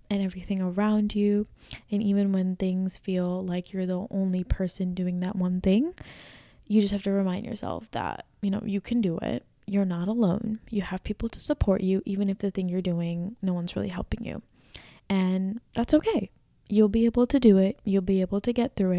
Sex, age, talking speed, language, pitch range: female, 20-39, 210 wpm, English, 185-210 Hz